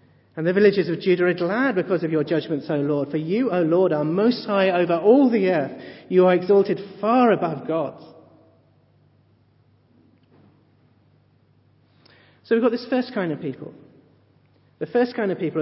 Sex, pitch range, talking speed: male, 140-185 Hz, 165 wpm